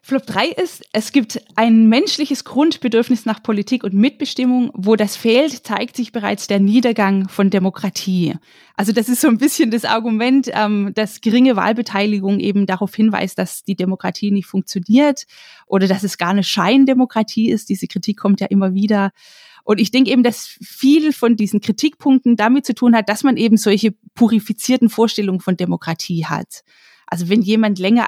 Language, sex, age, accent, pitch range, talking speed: German, female, 20-39, German, 200-240 Hz, 175 wpm